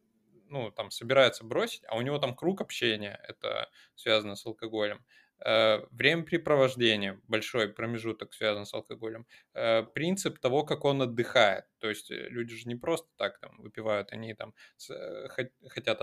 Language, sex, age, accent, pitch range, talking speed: Russian, male, 20-39, native, 115-140 Hz, 145 wpm